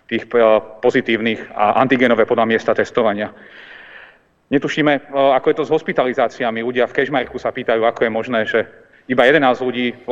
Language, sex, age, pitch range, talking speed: Slovak, male, 40-59, 115-140 Hz, 155 wpm